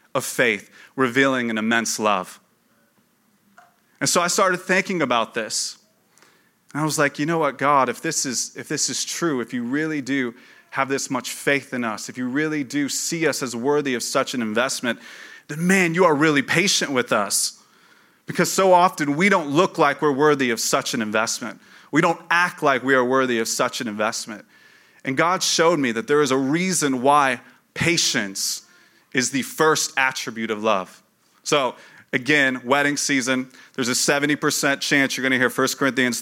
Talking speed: 185 wpm